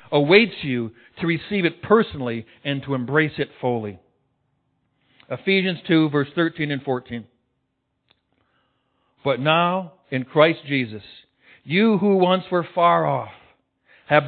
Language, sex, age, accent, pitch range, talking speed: English, male, 60-79, American, 130-185 Hz, 120 wpm